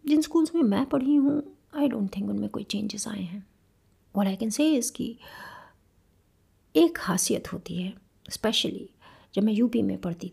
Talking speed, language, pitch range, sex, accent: 170 wpm, Hindi, 190-245 Hz, female, native